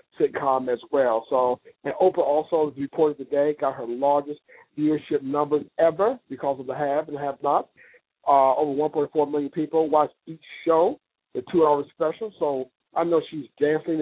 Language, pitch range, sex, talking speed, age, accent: English, 145-190 Hz, male, 165 wpm, 50-69, American